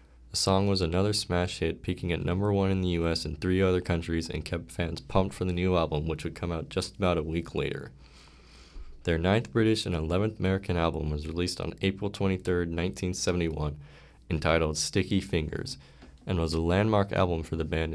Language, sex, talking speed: English, male, 195 wpm